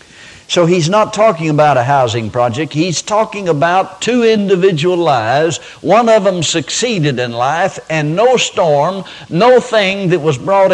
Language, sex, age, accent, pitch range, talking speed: English, male, 60-79, American, 130-190 Hz, 155 wpm